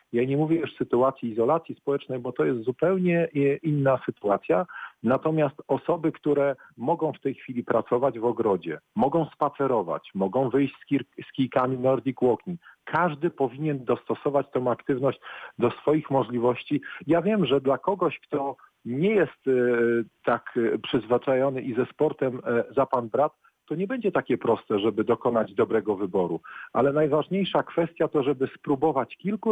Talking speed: 145 wpm